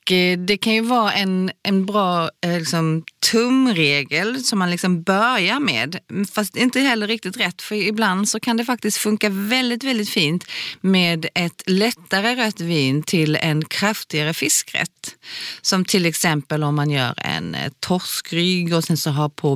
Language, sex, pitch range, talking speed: Swedish, female, 145-195 Hz, 155 wpm